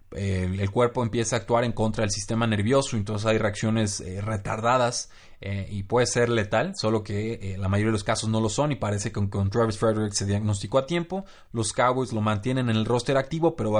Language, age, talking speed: Spanish, 20-39, 230 wpm